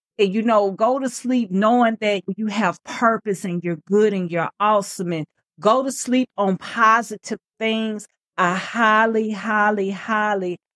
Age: 40-59